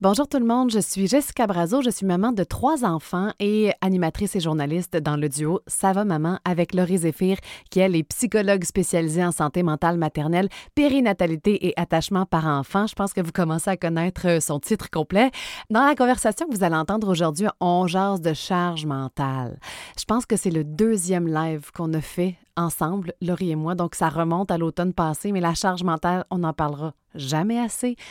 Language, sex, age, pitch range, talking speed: French, female, 30-49, 170-205 Hz, 205 wpm